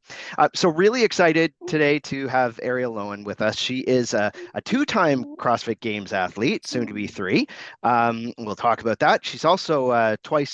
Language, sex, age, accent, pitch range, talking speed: English, male, 30-49, American, 110-145 Hz, 180 wpm